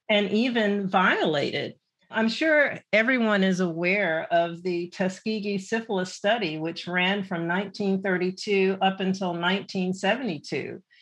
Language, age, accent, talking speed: English, 50-69, American, 110 wpm